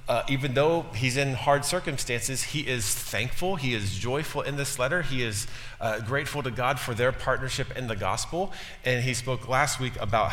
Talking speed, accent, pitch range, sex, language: 200 wpm, American, 100-135 Hz, male, English